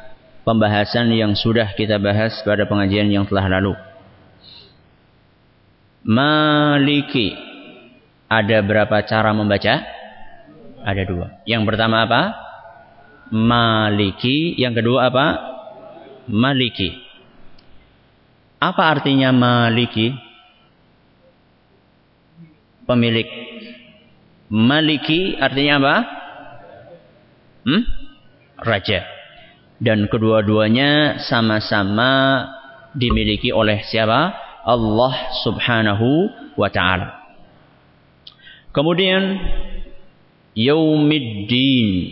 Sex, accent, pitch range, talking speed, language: male, native, 110-140 Hz, 65 wpm, Indonesian